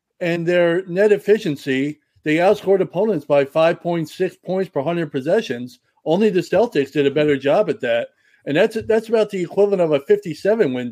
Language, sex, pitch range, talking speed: English, male, 140-185 Hz, 170 wpm